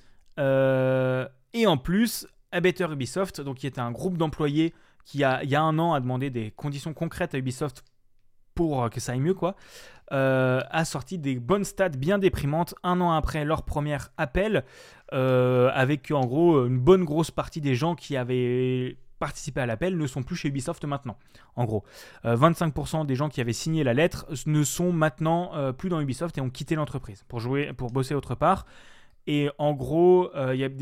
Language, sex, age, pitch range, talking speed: French, male, 20-39, 130-165 Hz, 185 wpm